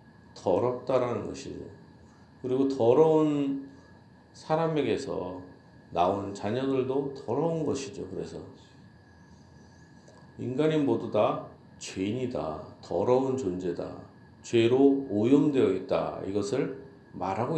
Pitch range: 110-140 Hz